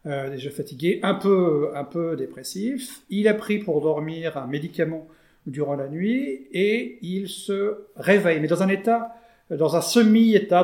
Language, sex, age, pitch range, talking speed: French, male, 40-59, 145-200 Hz, 165 wpm